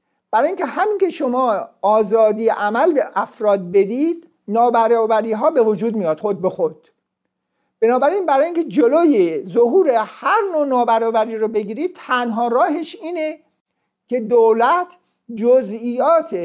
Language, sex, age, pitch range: Persian, male, 50-69, 195-275 Hz